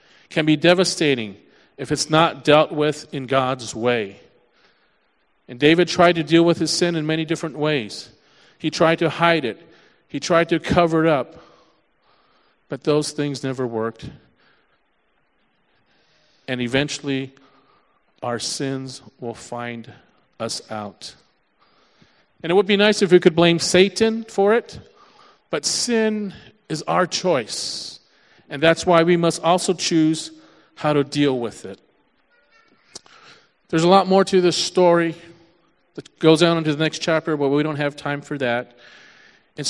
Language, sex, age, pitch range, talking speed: English, male, 40-59, 130-170 Hz, 150 wpm